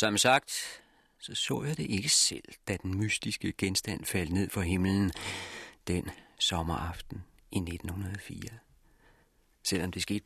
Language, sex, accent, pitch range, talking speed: Danish, male, native, 95-130 Hz, 135 wpm